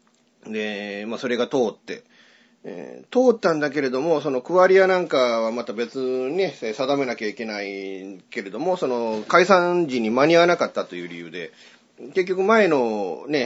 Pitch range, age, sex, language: 115-185 Hz, 30-49, male, Japanese